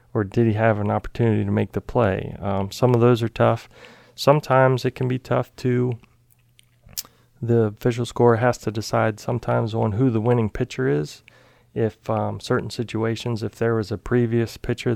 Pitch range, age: 110-120 Hz, 40-59